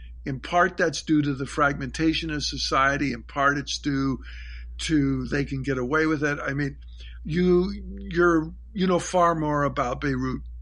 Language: English